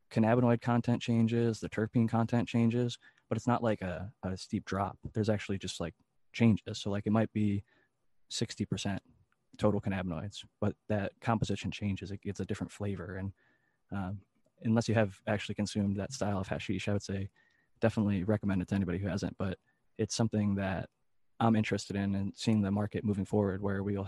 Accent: American